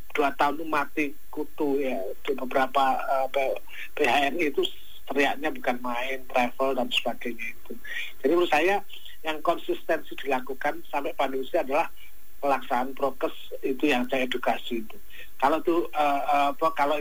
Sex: male